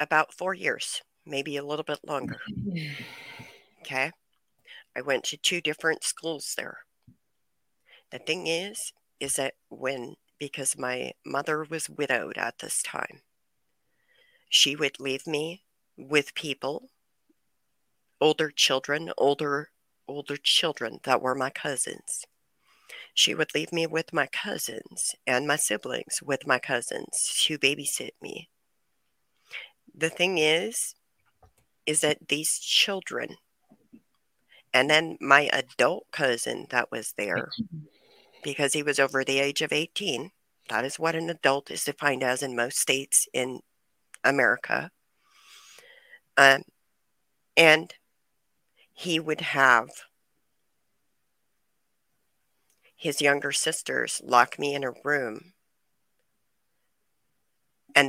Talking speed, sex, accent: 115 wpm, female, American